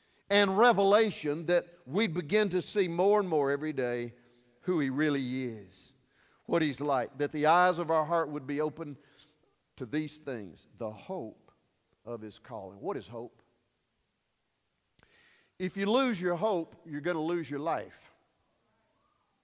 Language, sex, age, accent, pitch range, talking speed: English, male, 50-69, American, 145-225 Hz, 155 wpm